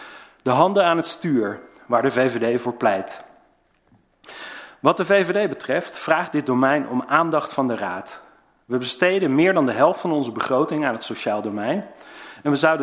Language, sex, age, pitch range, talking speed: Dutch, male, 40-59, 120-155 Hz, 180 wpm